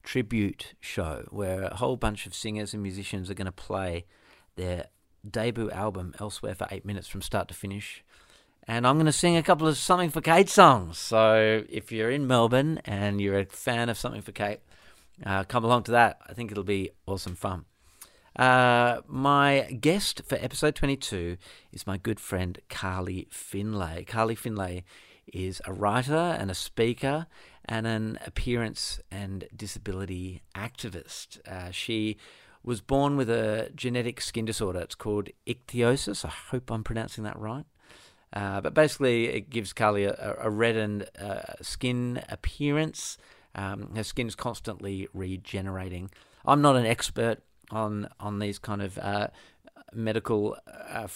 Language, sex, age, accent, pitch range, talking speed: English, male, 40-59, Australian, 95-120 Hz, 155 wpm